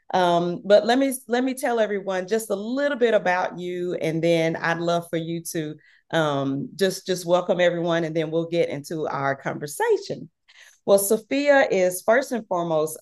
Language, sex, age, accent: English, female, 40-59, American